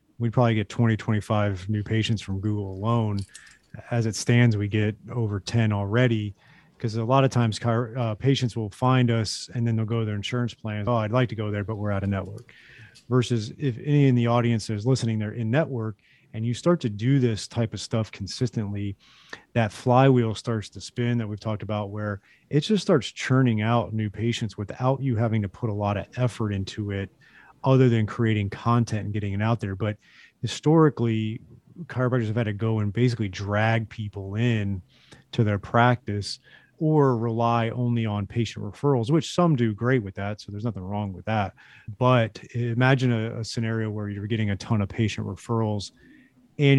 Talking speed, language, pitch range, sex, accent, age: 195 wpm, English, 105-125 Hz, male, American, 30-49